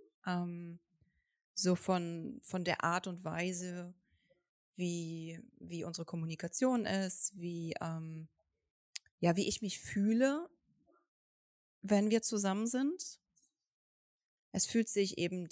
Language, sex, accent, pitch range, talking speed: German, female, German, 175-210 Hz, 95 wpm